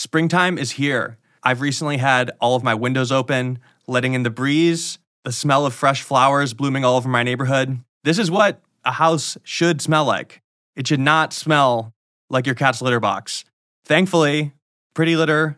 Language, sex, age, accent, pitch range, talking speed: English, male, 20-39, American, 125-145 Hz, 175 wpm